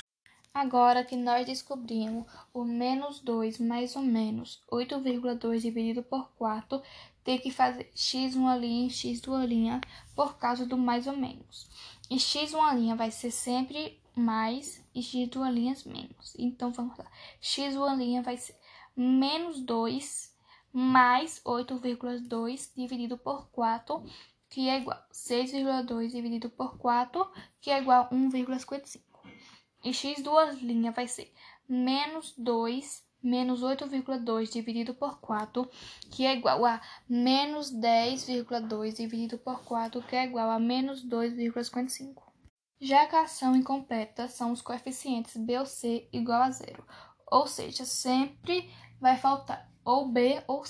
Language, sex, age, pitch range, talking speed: Portuguese, female, 10-29, 240-270 Hz, 130 wpm